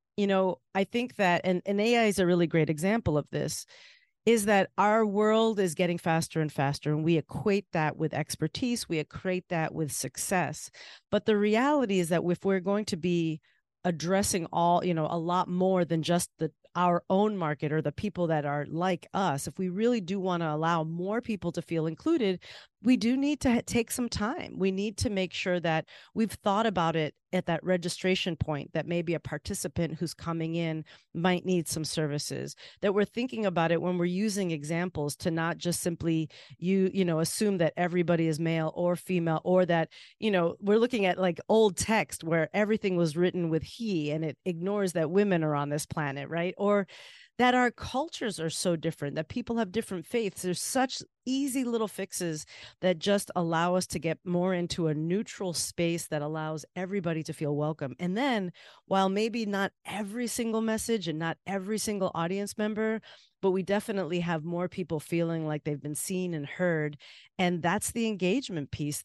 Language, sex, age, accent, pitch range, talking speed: English, female, 40-59, American, 160-205 Hz, 195 wpm